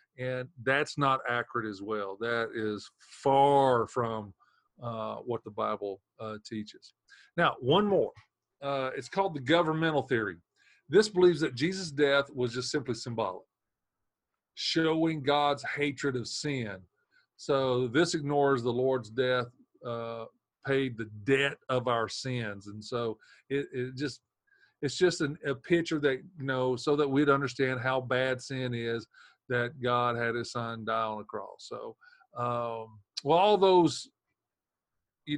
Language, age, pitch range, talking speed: English, 40-59, 120-150 Hz, 150 wpm